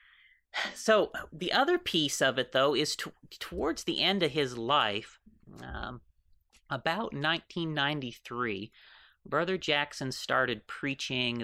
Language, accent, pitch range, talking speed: English, American, 110-150 Hz, 115 wpm